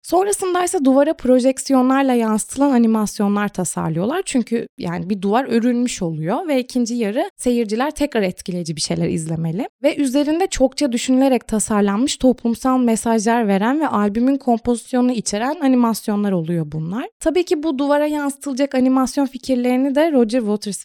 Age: 20-39